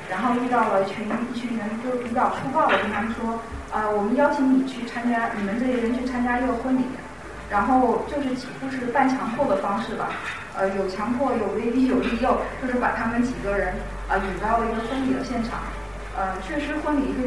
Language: Chinese